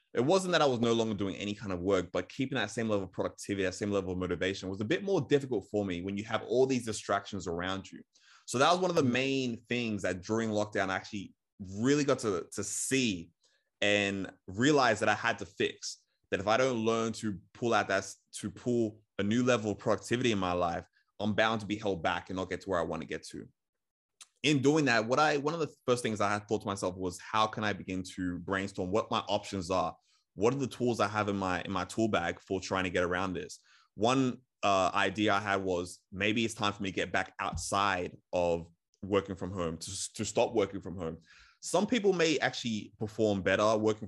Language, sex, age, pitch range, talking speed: English, male, 20-39, 95-115 Hz, 240 wpm